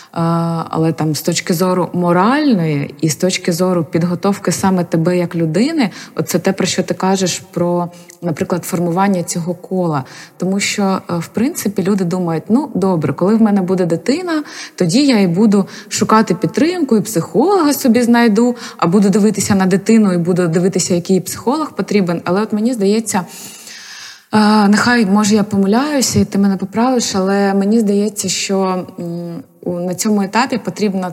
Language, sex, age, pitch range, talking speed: Ukrainian, female, 20-39, 175-210 Hz, 155 wpm